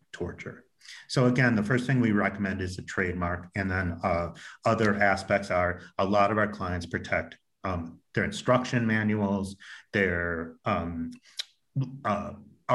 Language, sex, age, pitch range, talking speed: English, male, 30-49, 90-110 Hz, 140 wpm